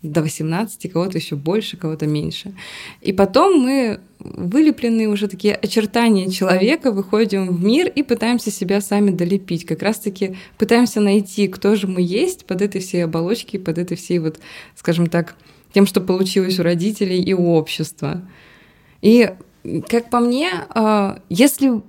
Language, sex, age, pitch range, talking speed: Russian, female, 20-39, 175-215 Hz, 150 wpm